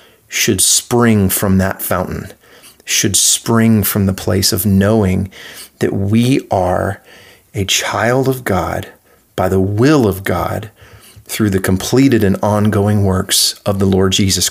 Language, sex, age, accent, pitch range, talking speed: English, male, 30-49, American, 95-110 Hz, 140 wpm